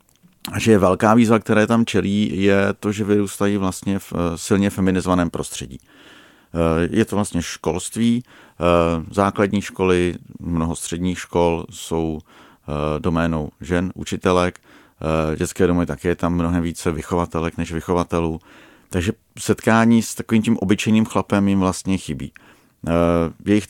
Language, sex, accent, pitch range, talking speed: Czech, male, native, 85-100 Hz, 125 wpm